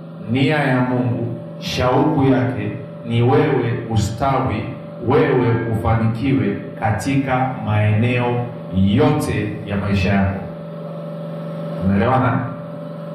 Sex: male